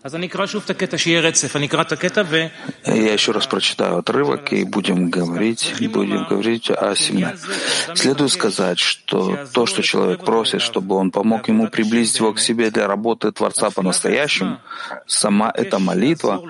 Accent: native